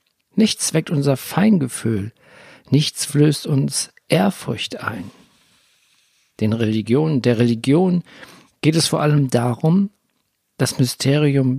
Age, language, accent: 50-69, German, German